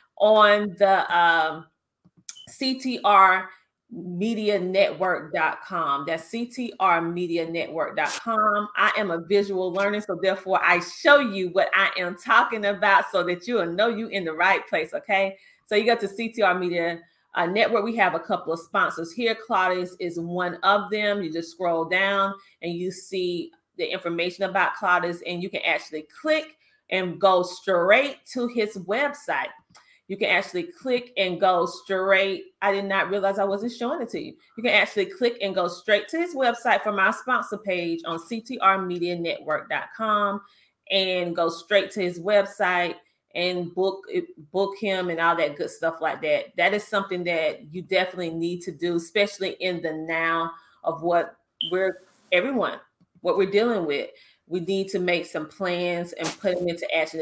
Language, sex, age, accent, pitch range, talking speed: English, female, 30-49, American, 175-210 Hz, 165 wpm